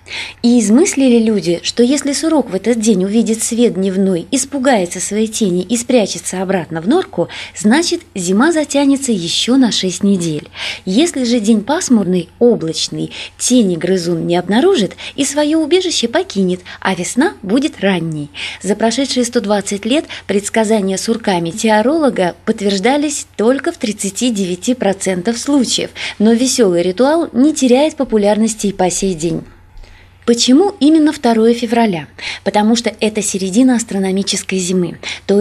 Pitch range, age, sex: 195-265 Hz, 20-39, female